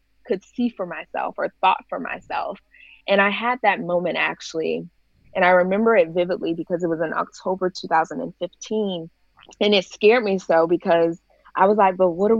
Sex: female